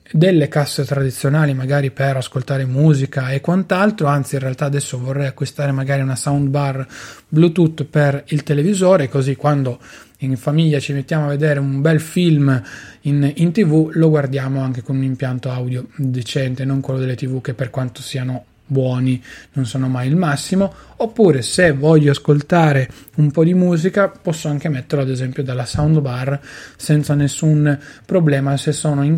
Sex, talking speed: male, 160 wpm